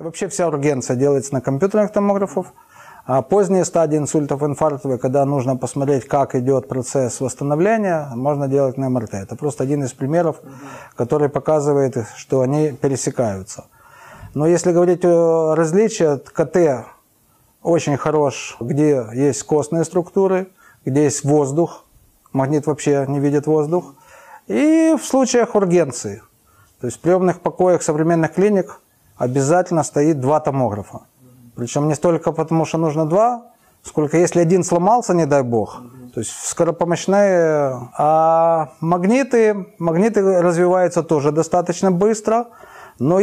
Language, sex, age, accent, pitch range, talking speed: Russian, male, 30-49, native, 140-180 Hz, 130 wpm